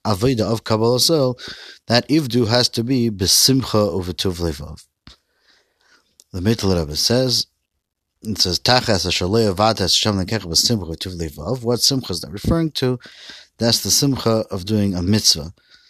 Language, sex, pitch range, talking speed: English, male, 95-120 Hz, 150 wpm